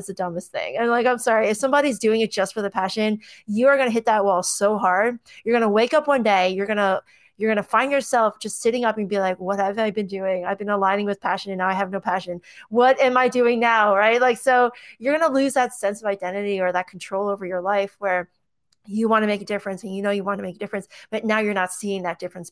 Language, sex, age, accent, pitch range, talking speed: English, female, 20-39, American, 195-230 Hz, 285 wpm